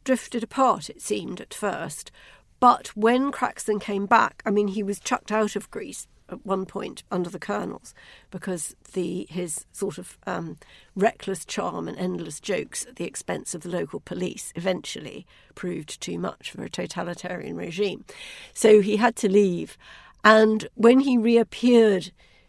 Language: English